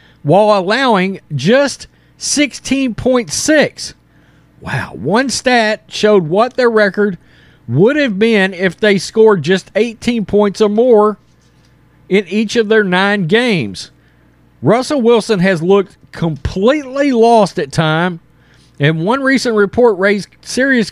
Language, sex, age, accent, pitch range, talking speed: English, male, 40-59, American, 175-240 Hz, 120 wpm